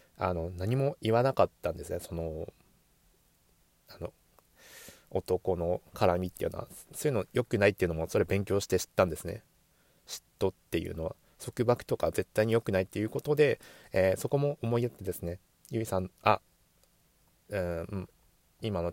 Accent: native